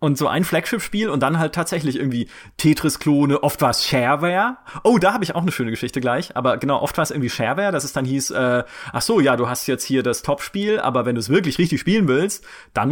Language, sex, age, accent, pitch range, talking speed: German, male, 30-49, German, 125-160 Hz, 235 wpm